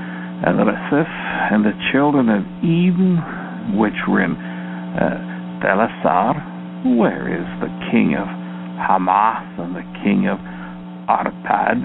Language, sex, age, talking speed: English, male, 60-79, 105 wpm